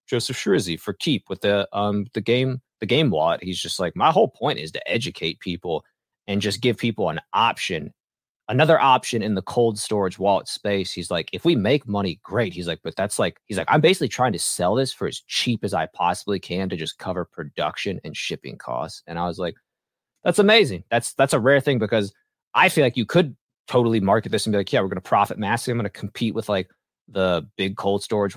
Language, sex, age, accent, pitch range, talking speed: English, male, 20-39, American, 95-115 Hz, 230 wpm